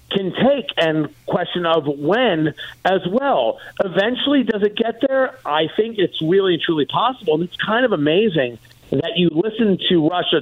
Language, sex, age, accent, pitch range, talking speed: English, male, 50-69, American, 160-215 Hz, 165 wpm